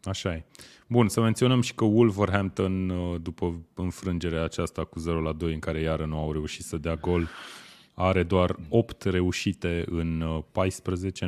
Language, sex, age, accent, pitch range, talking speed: Romanian, male, 30-49, native, 80-95 Hz, 150 wpm